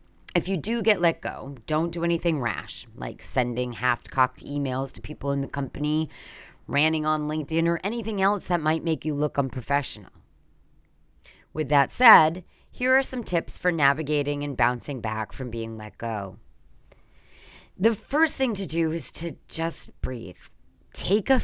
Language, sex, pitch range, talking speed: English, female, 130-175 Hz, 160 wpm